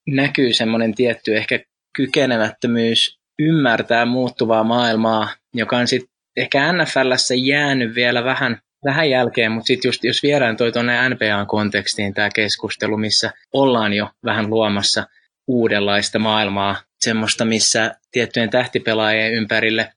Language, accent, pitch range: Finnish, native, 105-125 Hz